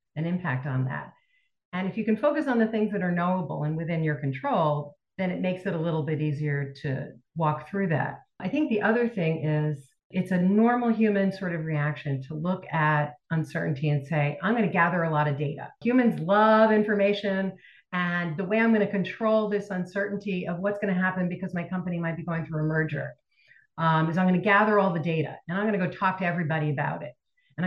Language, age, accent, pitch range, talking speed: English, 40-59, American, 155-200 Hz, 225 wpm